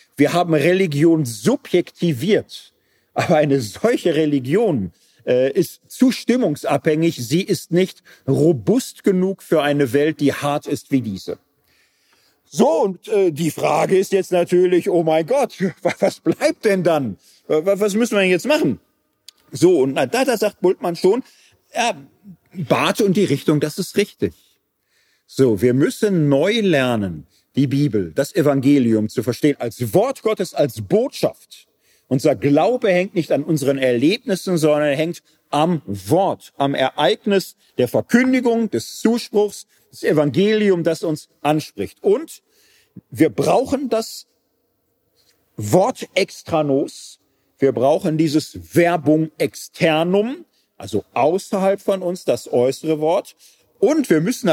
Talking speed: 130 wpm